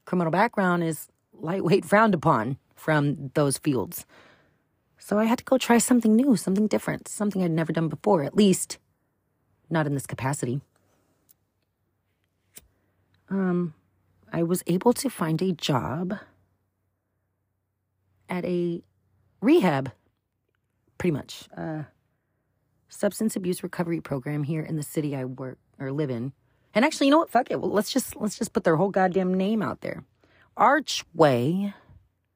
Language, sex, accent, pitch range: English, female, American, 115-185 Hz